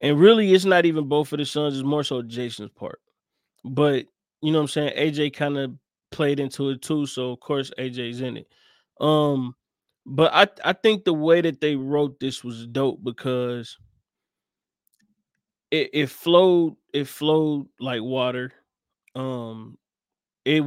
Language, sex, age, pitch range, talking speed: English, male, 20-39, 130-160 Hz, 160 wpm